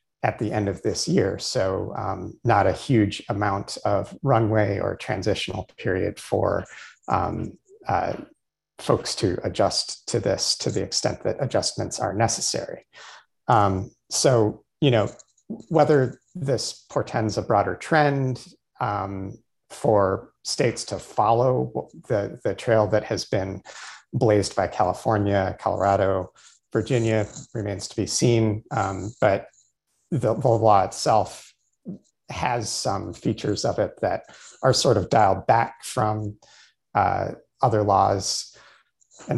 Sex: male